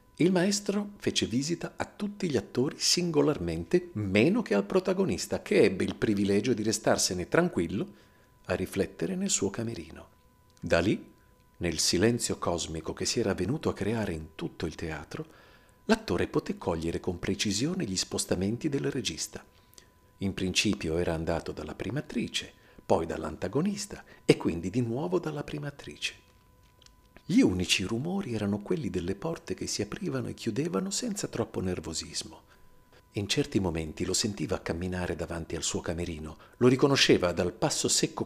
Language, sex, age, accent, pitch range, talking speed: Italian, male, 50-69, native, 90-145 Hz, 150 wpm